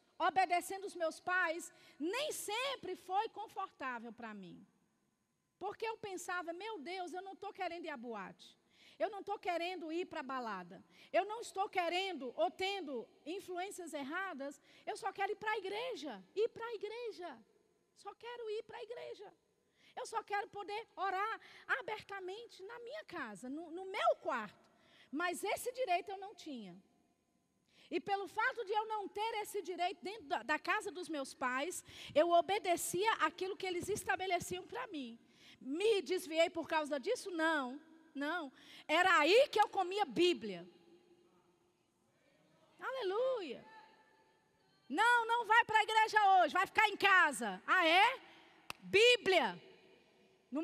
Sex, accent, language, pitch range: female, Brazilian, Portuguese, 325-425 Hz